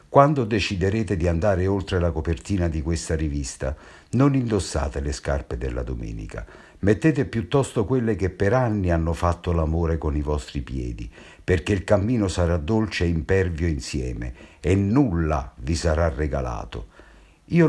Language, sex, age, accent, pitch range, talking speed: Italian, male, 60-79, native, 75-105 Hz, 145 wpm